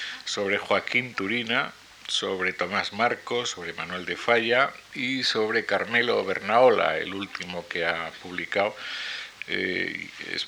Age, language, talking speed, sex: 50-69, Spanish, 120 wpm, male